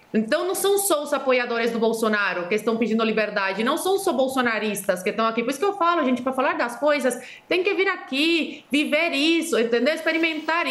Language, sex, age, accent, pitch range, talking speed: Portuguese, female, 20-39, Brazilian, 250-335 Hz, 215 wpm